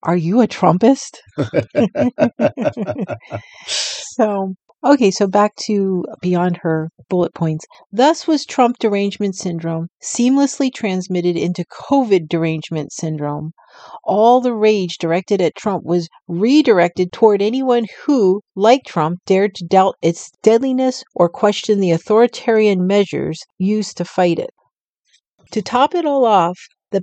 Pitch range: 175-230 Hz